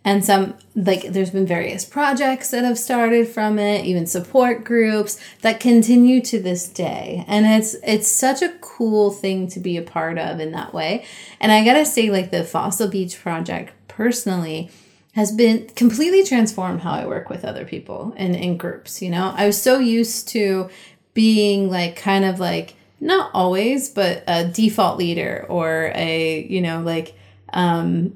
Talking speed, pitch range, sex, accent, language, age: 175 wpm, 185-230 Hz, female, American, English, 30-49